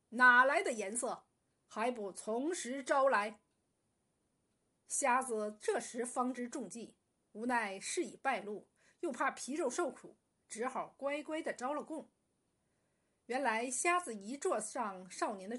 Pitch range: 215-305 Hz